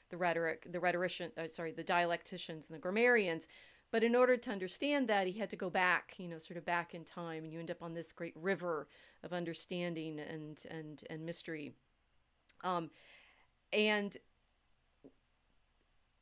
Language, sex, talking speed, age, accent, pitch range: English, female, 170 wpm, 40-59, American, 160-190 Hz